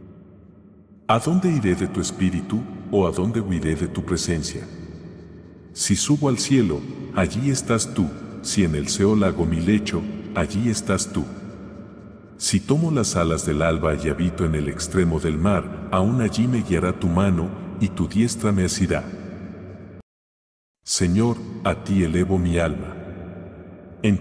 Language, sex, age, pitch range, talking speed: English, male, 50-69, 90-110 Hz, 150 wpm